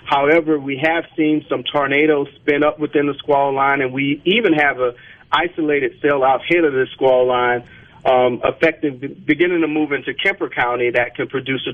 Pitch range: 125-155 Hz